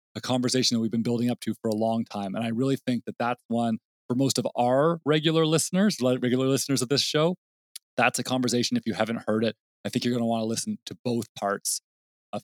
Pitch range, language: 110-130 Hz, English